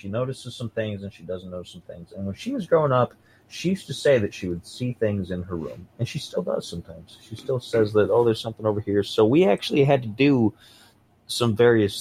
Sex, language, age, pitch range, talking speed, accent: male, English, 30-49, 95-120 Hz, 250 wpm, American